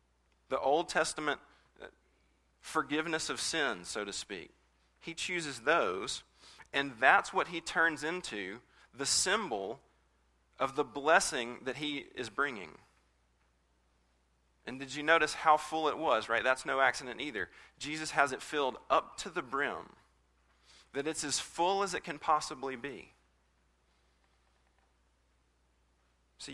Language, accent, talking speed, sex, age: English, American, 130 wpm, male, 40-59